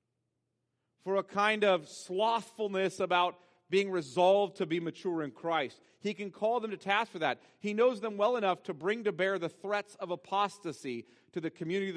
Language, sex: English, male